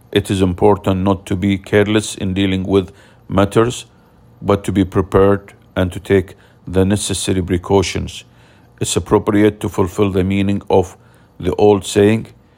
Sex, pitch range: male, 95-105 Hz